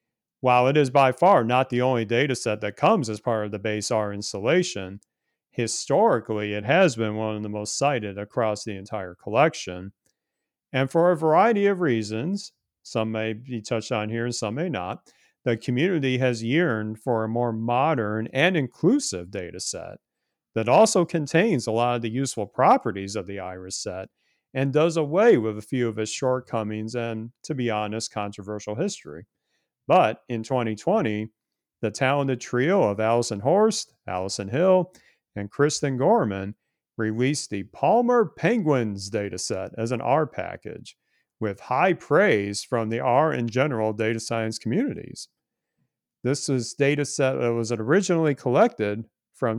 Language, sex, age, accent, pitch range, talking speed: English, male, 40-59, American, 110-145 Hz, 160 wpm